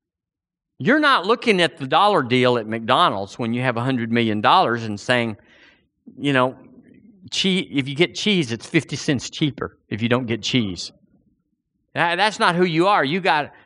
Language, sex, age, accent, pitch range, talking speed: English, male, 50-69, American, 120-170 Hz, 170 wpm